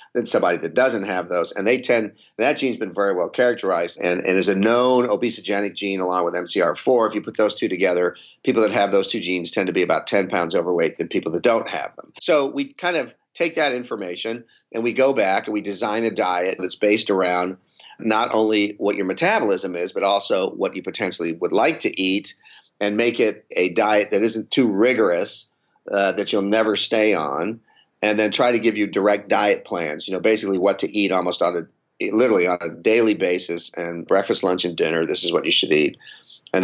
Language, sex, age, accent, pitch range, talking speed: English, male, 40-59, American, 95-120 Hz, 220 wpm